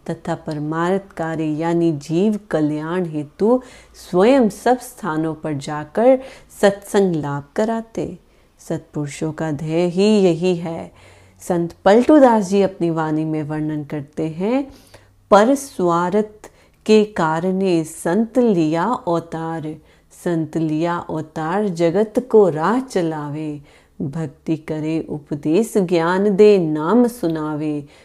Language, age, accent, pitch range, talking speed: Hindi, 30-49, native, 155-205 Hz, 100 wpm